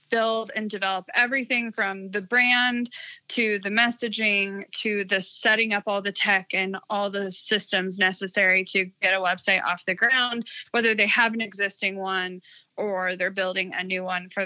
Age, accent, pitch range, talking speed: 20-39, American, 190-230 Hz, 175 wpm